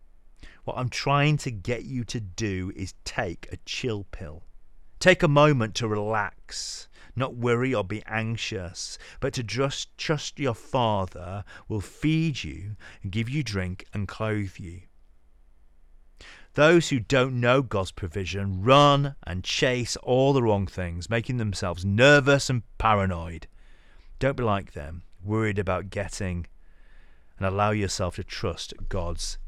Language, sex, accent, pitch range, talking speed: English, male, British, 85-125 Hz, 140 wpm